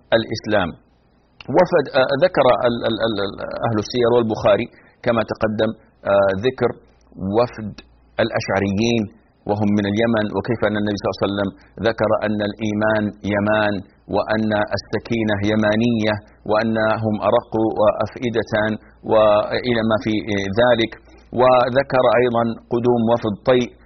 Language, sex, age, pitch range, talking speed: Arabic, male, 40-59, 105-125 Hz, 115 wpm